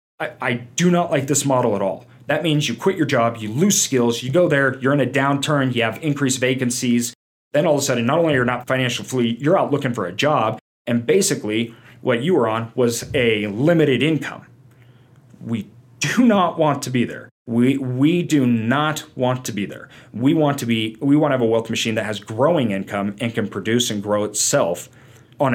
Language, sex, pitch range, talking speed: English, male, 115-150 Hz, 220 wpm